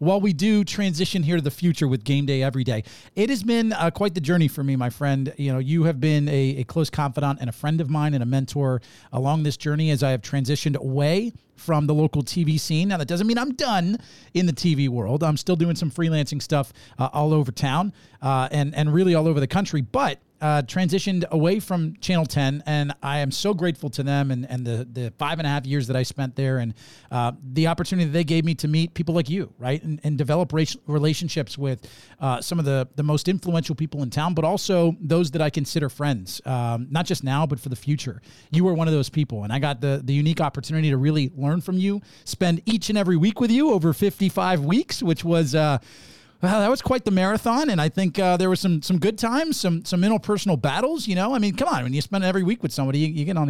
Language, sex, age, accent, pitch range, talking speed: English, male, 40-59, American, 140-180 Hz, 250 wpm